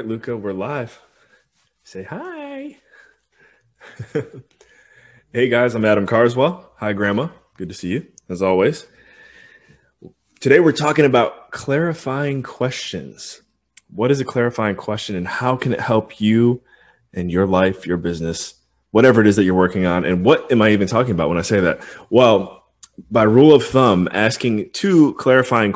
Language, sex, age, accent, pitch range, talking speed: English, male, 20-39, American, 95-125 Hz, 155 wpm